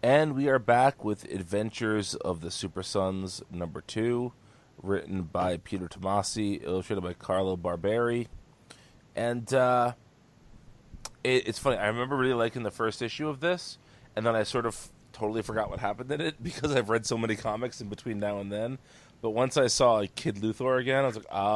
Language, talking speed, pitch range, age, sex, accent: English, 185 wpm, 100-125 Hz, 30-49, male, American